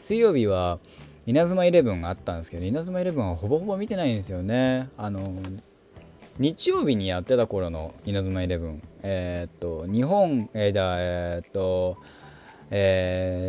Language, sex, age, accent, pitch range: Japanese, male, 20-39, native, 90-125 Hz